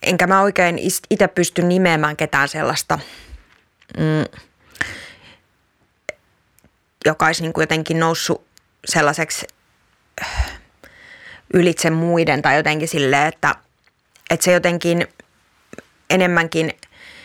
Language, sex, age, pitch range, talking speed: Finnish, female, 20-39, 155-175 Hz, 75 wpm